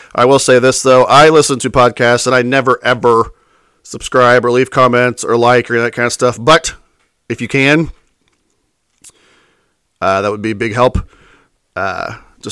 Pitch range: 110-125 Hz